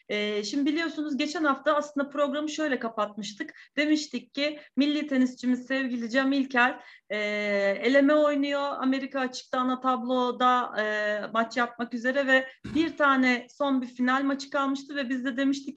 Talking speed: 135 wpm